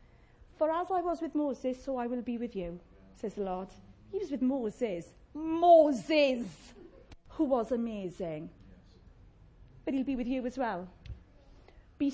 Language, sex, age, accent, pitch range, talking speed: English, female, 30-49, British, 205-295 Hz, 155 wpm